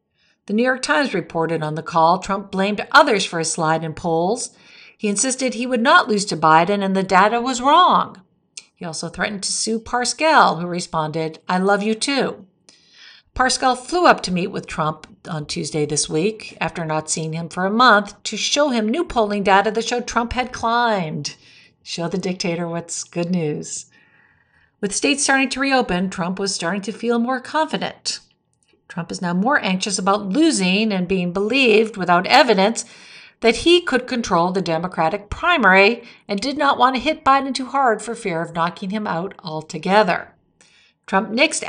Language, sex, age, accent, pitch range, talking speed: English, female, 50-69, American, 175-235 Hz, 180 wpm